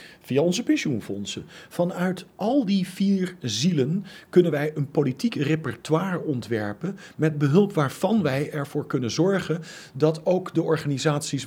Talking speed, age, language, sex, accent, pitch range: 130 wpm, 40-59, Dutch, male, Dutch, 145-200 Hz